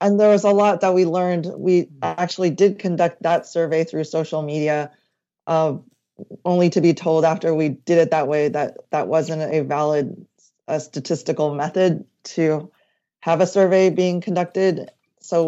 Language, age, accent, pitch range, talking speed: English, 30-49, American, 155-180 Hz, 165 wpm